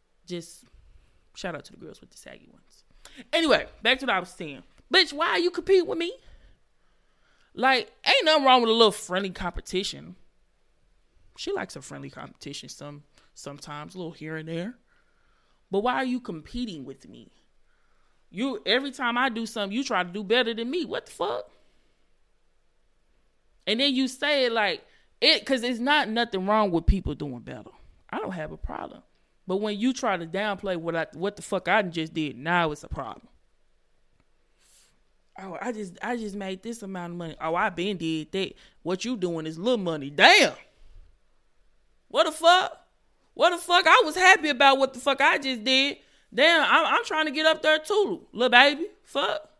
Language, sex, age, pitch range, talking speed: English, male, 20-39, 175-290 Hz, 190 wpm